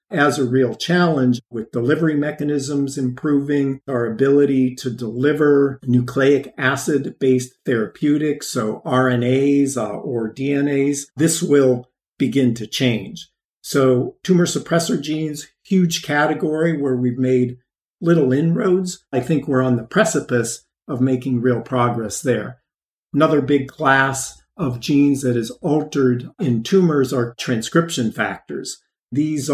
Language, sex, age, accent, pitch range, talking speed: English, male, 50-69, American, 125-145 Hz, 125 wpm